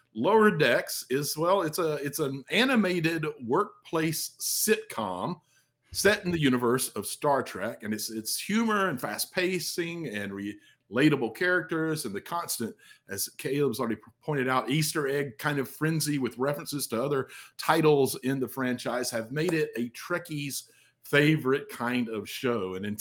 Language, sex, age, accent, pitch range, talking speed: English, male, 50-69, American, 120-165 Hz, 155 wpm